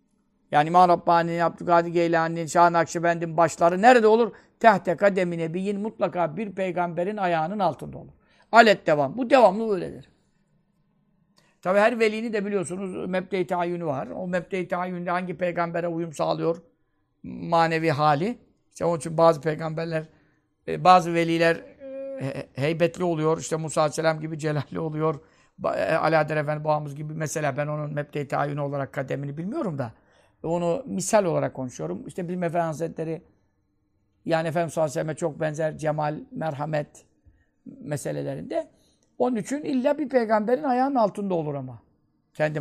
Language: Turkish